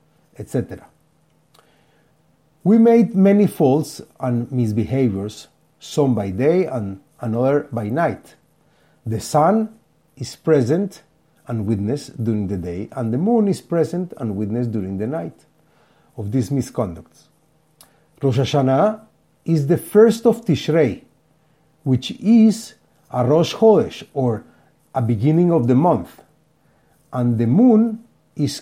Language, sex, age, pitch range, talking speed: English, male, 50-69, 120-175 Hz, 120 wpm